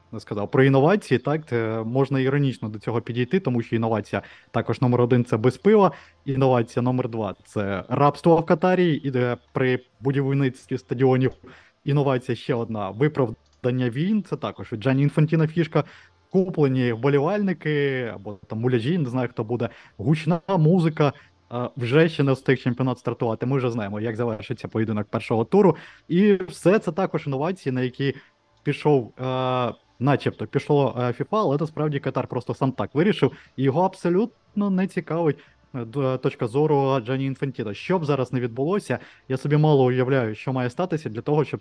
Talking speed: 155 wpm